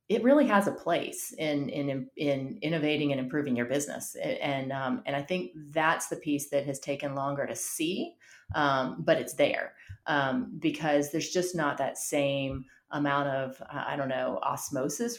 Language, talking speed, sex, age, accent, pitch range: English, 180 wpm, female, 30-49, American, 140-165 Hz